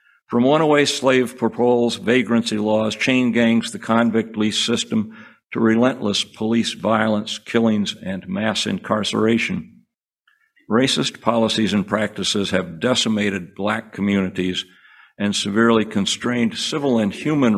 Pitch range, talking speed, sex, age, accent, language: 100-115 Hz, 120 wpm, male, 60-79, American, English